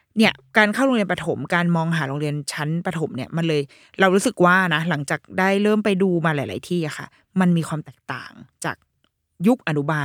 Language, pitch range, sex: Thai, 155-205 Hz, female